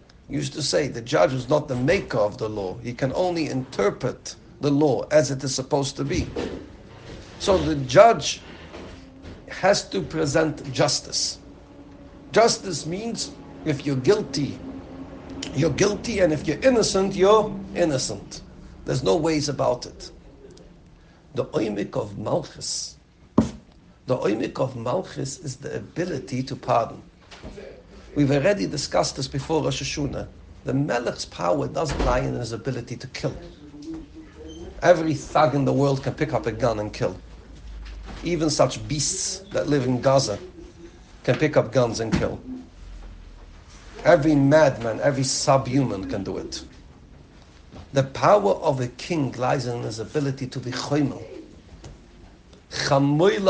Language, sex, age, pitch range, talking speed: English, male, 60-79, 115-155 Hz, 140 wpm